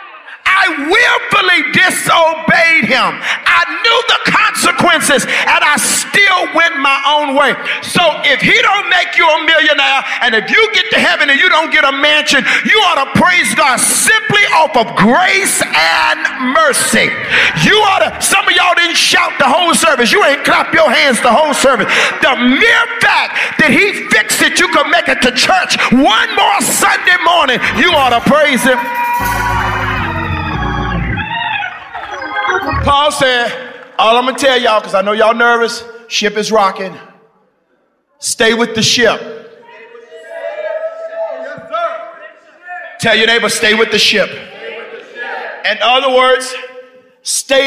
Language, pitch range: English, 245-350 Hz